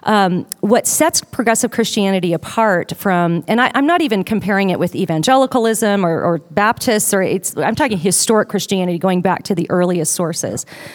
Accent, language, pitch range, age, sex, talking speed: American, English, 180-230 Hz, 40-59, female, 160 wpm